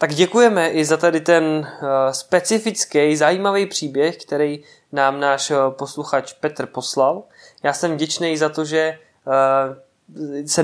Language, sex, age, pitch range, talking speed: Czech, male, 20-39, 135-155 Hz, 125 wpm